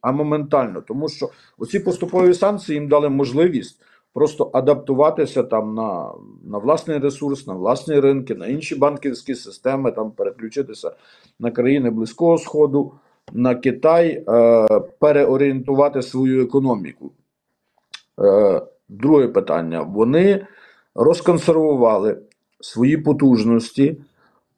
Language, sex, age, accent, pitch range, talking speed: Ukrainian, male, 50-69, native, 125-165 Hz, 105 wpm